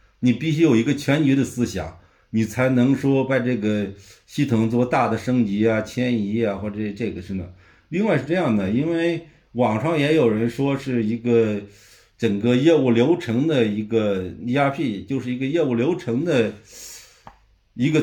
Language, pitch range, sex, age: Chinese, 105-150 Hz, male, 60-79